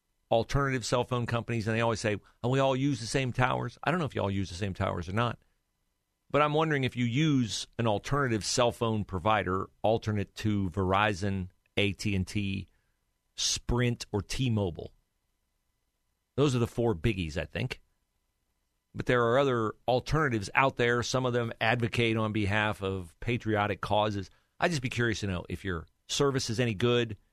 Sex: male